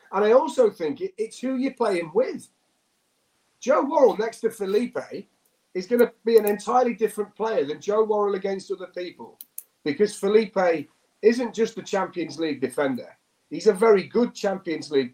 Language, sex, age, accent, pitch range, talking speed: English, male, 40-59, British, 150-225 Hz, 165 wpm